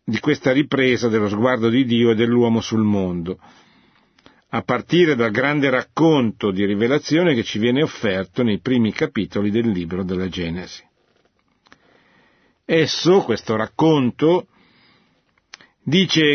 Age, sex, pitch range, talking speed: 50-69, male, 115-160 Hz, 120 wpm